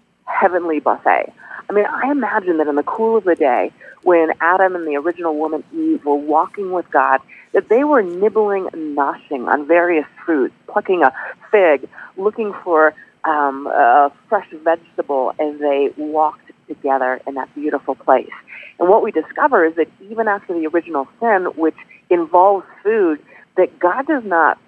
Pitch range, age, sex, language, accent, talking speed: 150-205 Hz, 40-59, female, English, American, 165 wpm